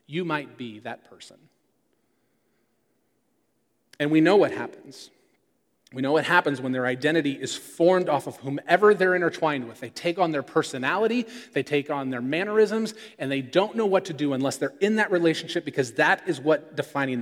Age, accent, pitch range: 30-49, American, 145-200 Hz